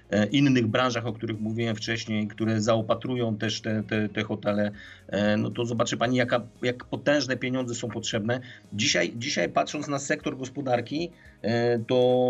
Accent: native